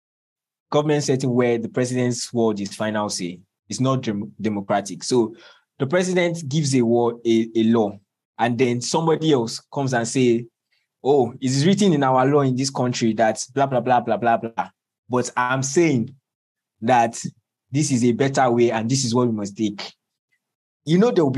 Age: 20-39